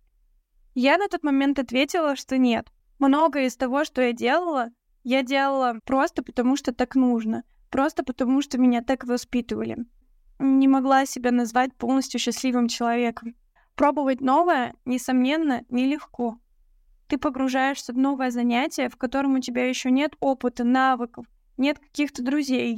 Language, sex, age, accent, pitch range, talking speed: Russian, female, 10-29, native, 245-280 Hz, 140 wpm